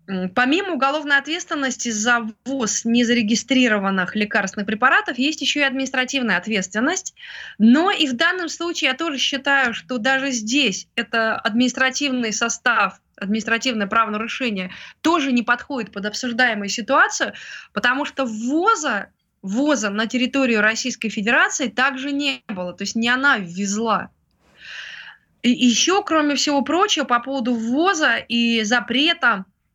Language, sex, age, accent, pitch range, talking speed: Russian, female, 20-39, native, 220-275 Hz, 125 wpm